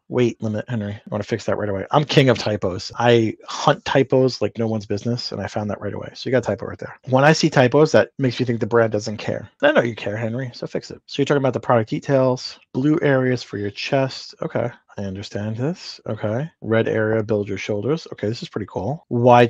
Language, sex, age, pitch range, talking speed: English, male, 30-49, 110-135 Hz, 250 wpm